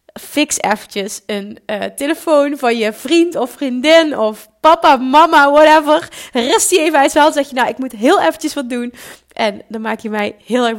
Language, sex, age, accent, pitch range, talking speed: Dutch, female, 30-49, Dutch, 205-260 Hz, 190 wpm